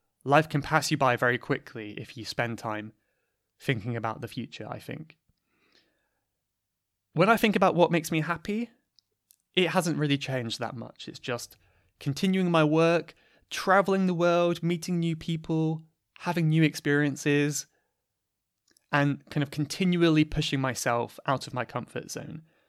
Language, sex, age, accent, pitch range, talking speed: English, male, 20-39, British, 125-160 Hz, 150 wpm